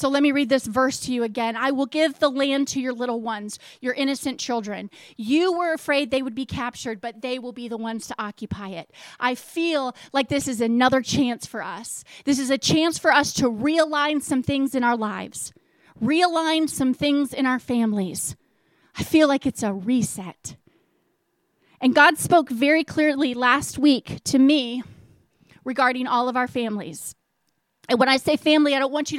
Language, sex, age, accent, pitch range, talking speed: English, female, 30-49, American, 240-290 Hz, 195 wpm